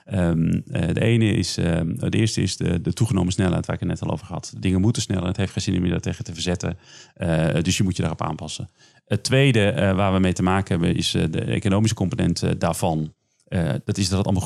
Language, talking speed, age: Dutch, 235 wpm, 40-59